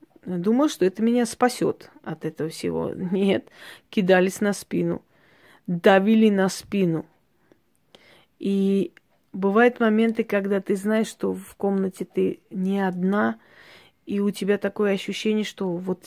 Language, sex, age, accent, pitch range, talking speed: Russian, female, 20-39, native, 190-225 Hz, 125 wpm